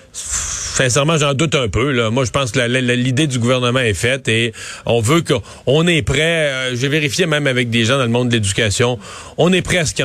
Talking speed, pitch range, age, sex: 250 wpm, 120-150 Hz, 40-59, male